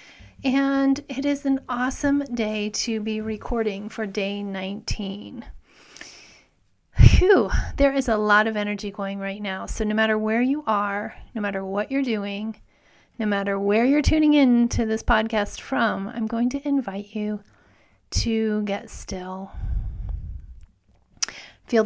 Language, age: English, 30-49